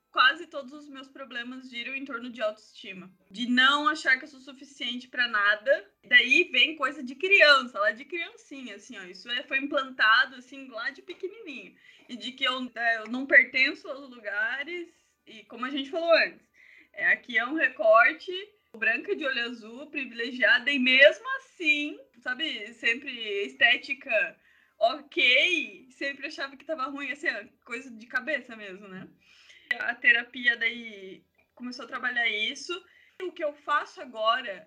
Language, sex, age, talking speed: Portuguese, female, 20-39, 155 wpm